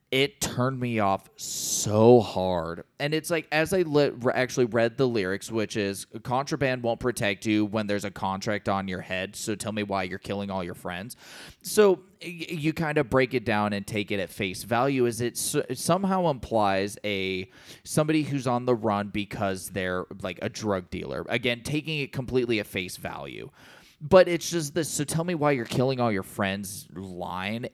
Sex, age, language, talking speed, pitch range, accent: male, 20-39, English, 190 wpm, 100-130 Hz, American